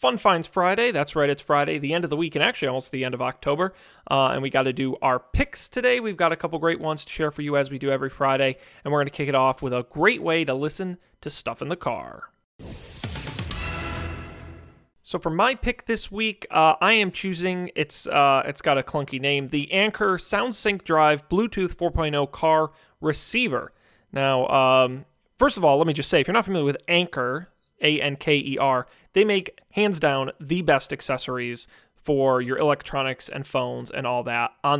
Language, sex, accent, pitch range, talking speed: English, male, American, 130-175 Hz, 205 wpm